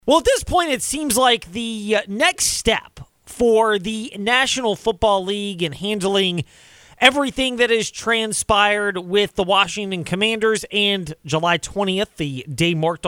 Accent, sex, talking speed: American, male, 140 wpm